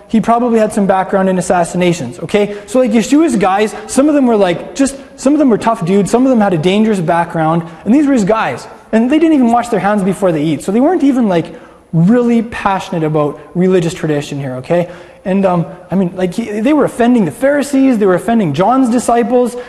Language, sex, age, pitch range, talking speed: English, male, 20-39, 175-235 Hz, 225 wpm